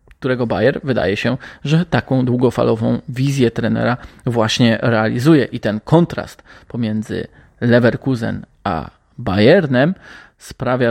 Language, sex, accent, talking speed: Polish, male, native, 105 wpm